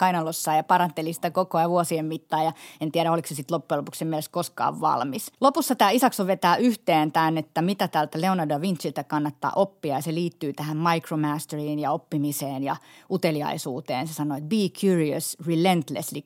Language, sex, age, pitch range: Finnish, female, 30-49, 150-175 Hz